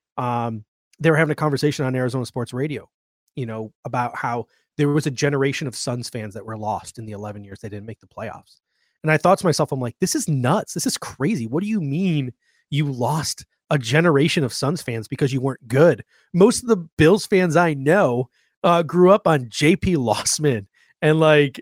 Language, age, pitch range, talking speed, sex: English, 30-49, 130-165 Hz, 210 wpm, male